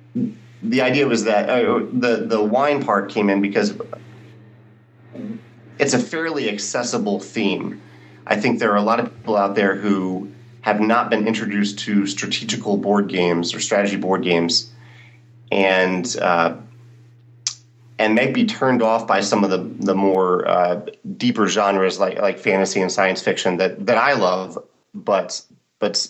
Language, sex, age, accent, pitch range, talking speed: English, male, 30-49, American, 95-120 Hz, 155 wpm